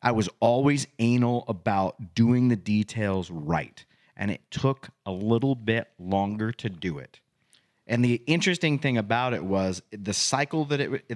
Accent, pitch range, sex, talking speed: American, 115-155 Hz, male, 160 wpm